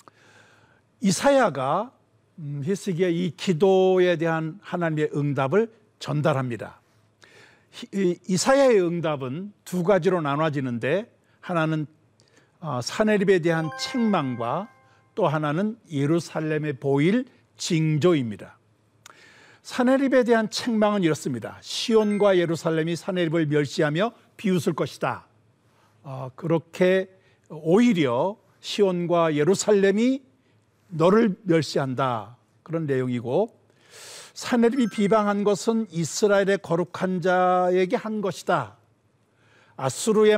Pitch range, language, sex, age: 140-200 Hz, Korean, male, 60-79